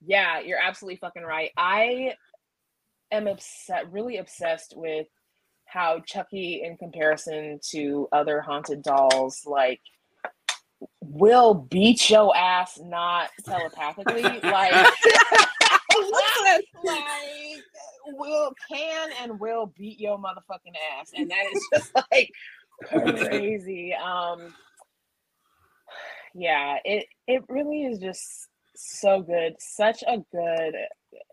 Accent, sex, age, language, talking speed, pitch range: American, female, 20-39, English, 100 wpm, 145-225 Hz